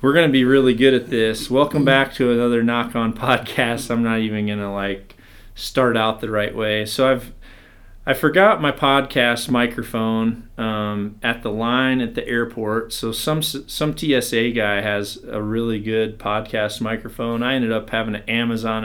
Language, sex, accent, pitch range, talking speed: English, male, American, 110-130 Hz, 175 wpm